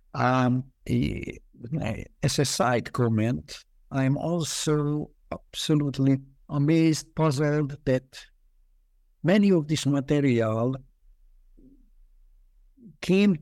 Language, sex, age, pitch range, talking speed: English, male, 60-79, 115-150 Hz, 70 wpm